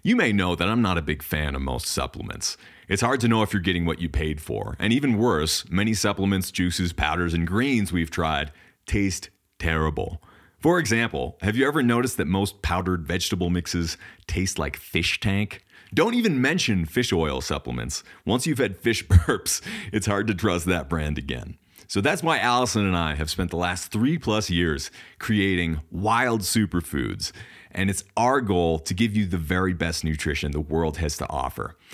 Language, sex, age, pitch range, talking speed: English, male, 40-59, 85-115 Hz, 190 wpm